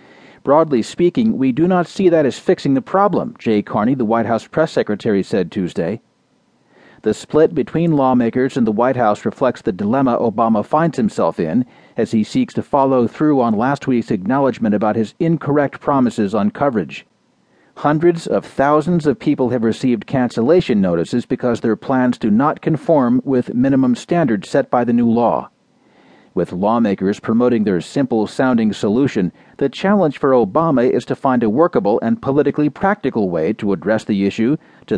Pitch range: 115-160 Hz